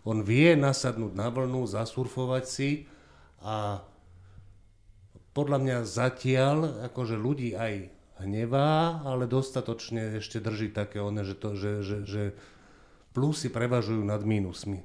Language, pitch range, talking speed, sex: Slovak, 100-120 Hz, 115 wpm, male